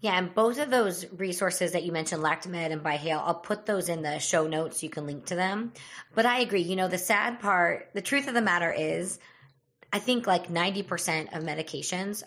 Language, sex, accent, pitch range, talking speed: English, female, American, 155-185 Hz, 220 wpm